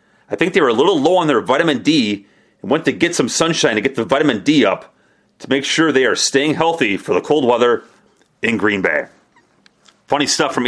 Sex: male